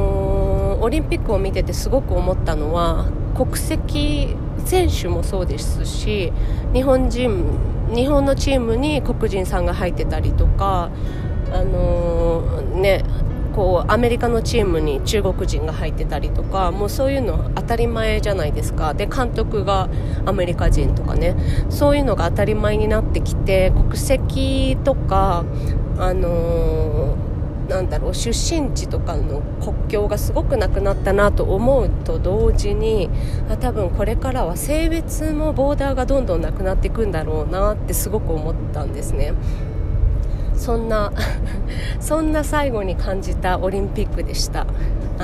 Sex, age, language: female, 30-49, Japanese